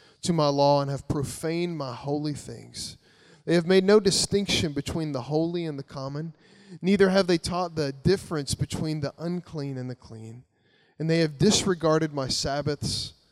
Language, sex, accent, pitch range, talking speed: English, male, American, 135-170 Hz, 170 wpm